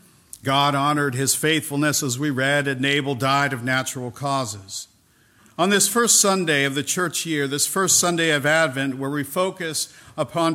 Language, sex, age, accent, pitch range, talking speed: English, male, 50-69, American, 130-160 Hz, 170 wpm